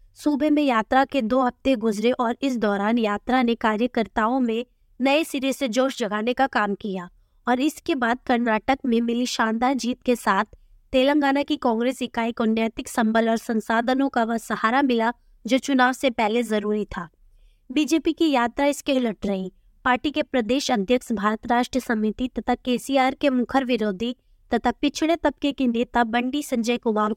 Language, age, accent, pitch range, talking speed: English, 20-39, Indian, 230-275 Hz, 125 wpm